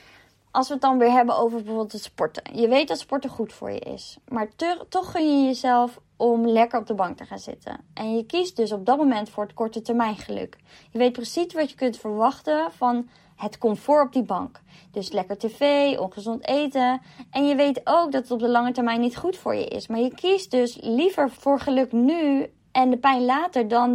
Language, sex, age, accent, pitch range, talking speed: Dutch, female, 20-39, Dutch, 225-280 Hz, 225 wpm